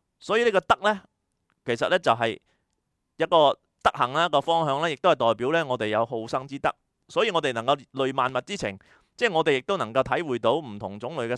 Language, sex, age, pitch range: Chinese, male, 30-49, 110-150 Hz